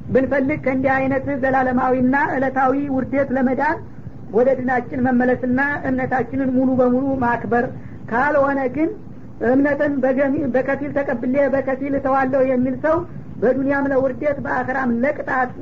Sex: female